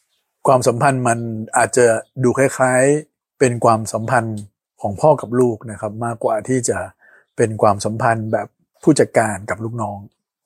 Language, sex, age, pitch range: Thai, male, 60-79, 110-135 Hz